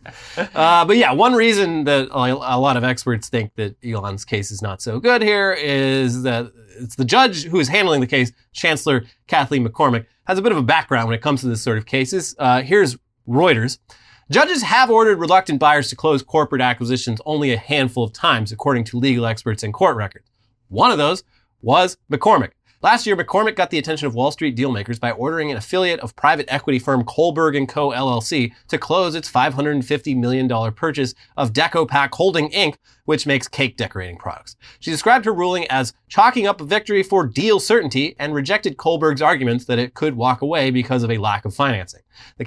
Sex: male